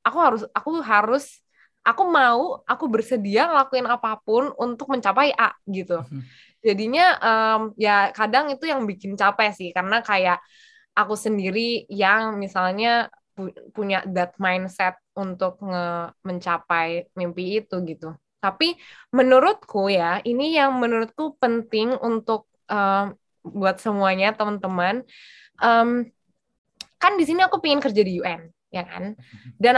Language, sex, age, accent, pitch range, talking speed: Indonesian, female, 20-39, native, 190-245 Hz, 125 wpm